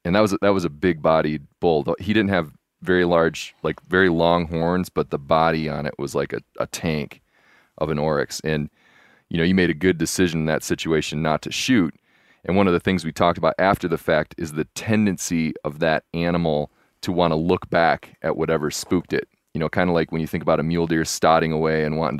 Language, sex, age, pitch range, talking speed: English, male, 30-49, 75-85 Hz, 230 wpm